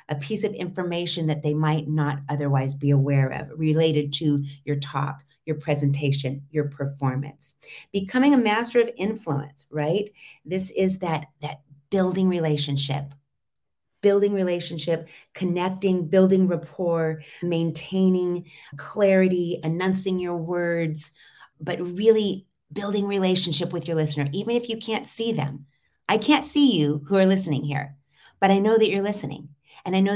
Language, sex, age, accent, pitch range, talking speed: English, female, 40-59, American, 150-200 Hz, 145 wpm